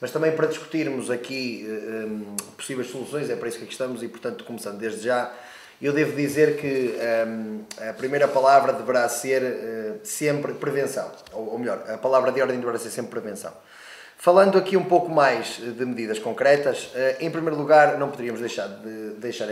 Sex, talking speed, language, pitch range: male, 170 wpm, English, 120-160 Hz